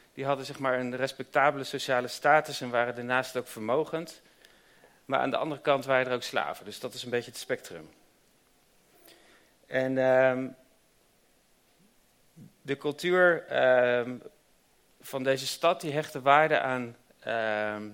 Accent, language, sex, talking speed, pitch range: Dutch, Dutch, male, 140 wpm, 125-145 Hz